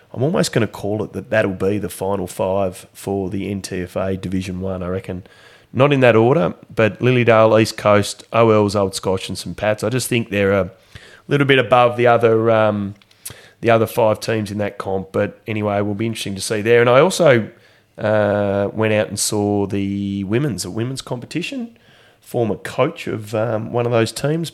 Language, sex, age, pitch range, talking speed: English, male, 30-49, 100-120 Hz, 205 wpm